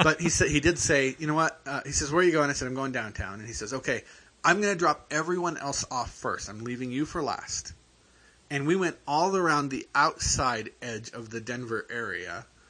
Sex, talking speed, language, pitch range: male, 235 wpm, English, 110-140 Hz